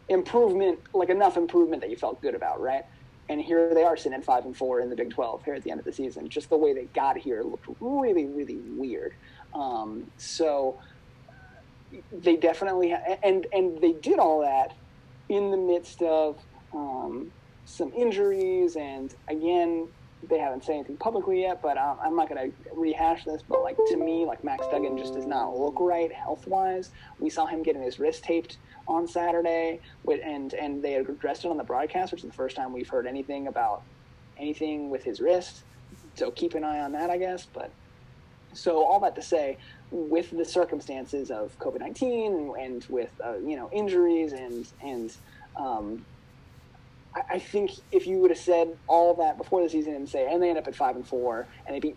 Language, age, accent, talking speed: English, 30-49, American, 200 wpm